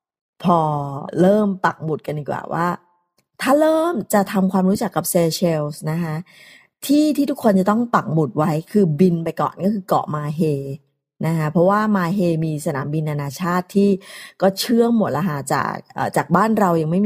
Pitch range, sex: 165-210 Hz, female